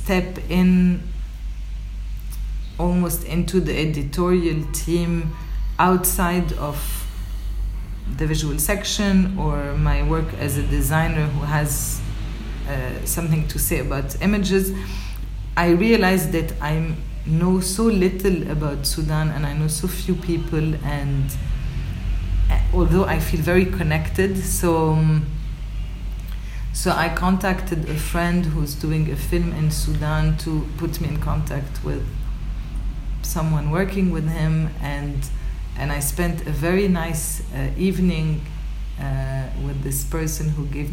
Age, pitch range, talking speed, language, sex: 40-59, 140-175 Hz, 125 wpm, English, female